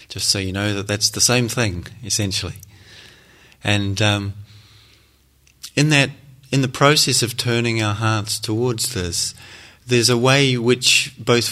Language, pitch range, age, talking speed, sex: English, 105-125 Hz, 30-49, 140 wpm, male